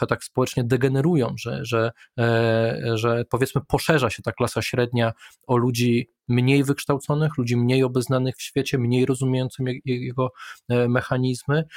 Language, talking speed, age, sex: Polish, 120 wpm, 20-39, male